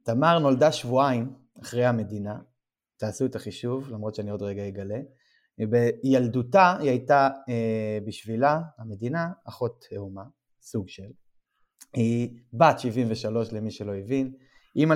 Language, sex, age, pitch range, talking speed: Hebrew, male, 20-39, 115-145 Hz, 120 wpm